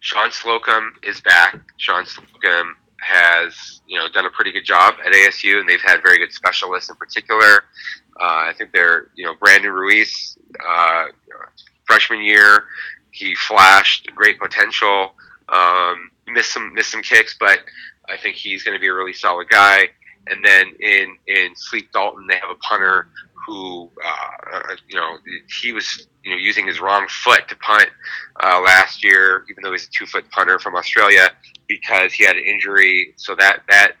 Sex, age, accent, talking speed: male, 30-49, American, 175 wpm